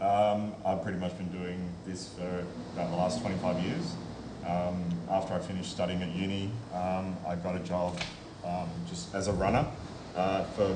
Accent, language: Australian, English